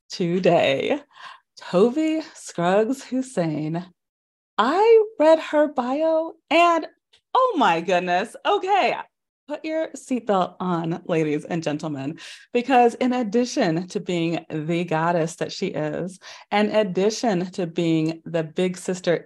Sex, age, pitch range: female, 30-49, 170-250 Hz